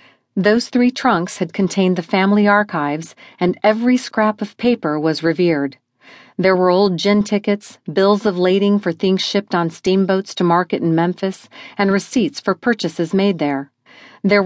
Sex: female